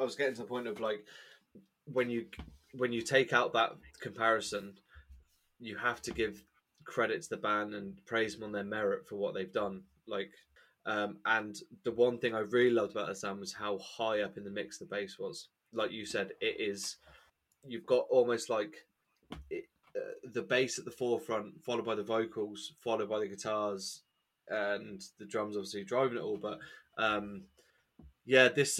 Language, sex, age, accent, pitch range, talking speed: English, male, 20-39, British, 105-120 Hz, 190 wpm